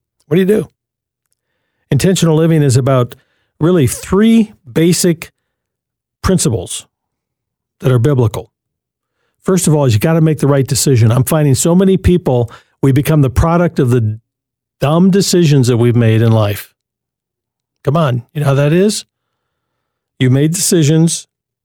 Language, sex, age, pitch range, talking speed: English, male, 50-69, 120-155 Hz, 150 wpm